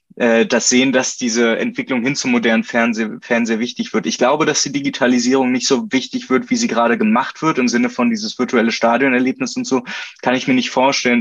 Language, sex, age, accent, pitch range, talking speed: German, male, 20-39, German, 115-145 Hz, 205 wpm